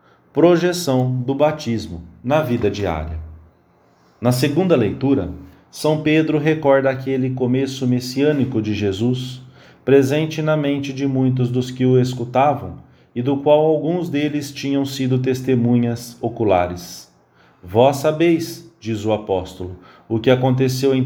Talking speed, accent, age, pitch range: 125 wpm, Brazilian, 40-59, 110-140 Hz